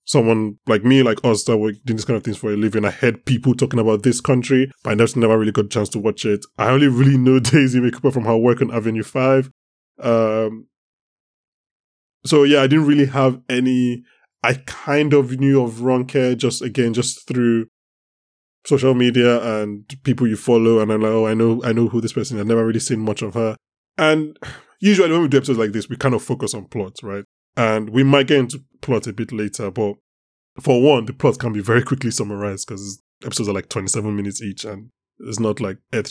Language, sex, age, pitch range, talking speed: English, male, 10-29, 110-135 Hz, 225 wpm